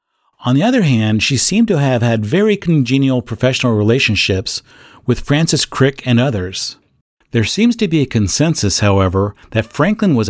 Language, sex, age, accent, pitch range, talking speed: English, male, 40-59, American, 105-145 Hz, 165 wpm